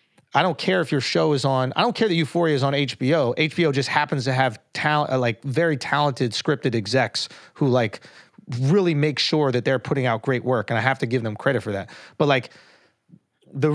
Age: 30-49